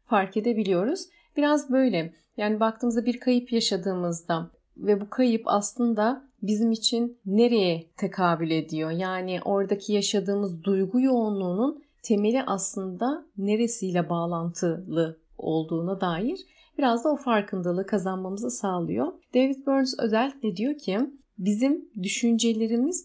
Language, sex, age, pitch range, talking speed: Turkish, female, 30-49, 185-240 Hz, 110 wpm